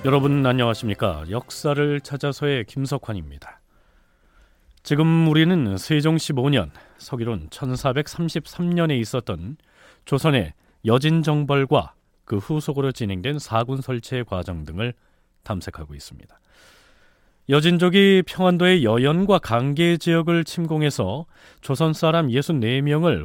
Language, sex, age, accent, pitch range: Korean, male, 30-49, native, 110-160 Hz